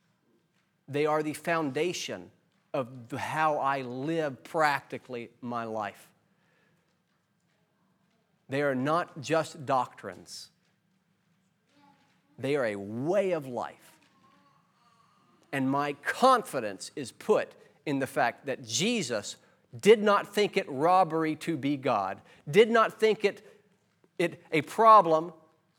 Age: 40-59